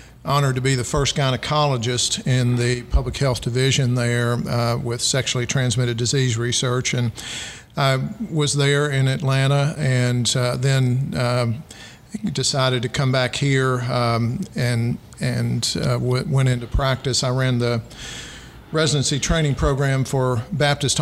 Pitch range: 120-135 Hz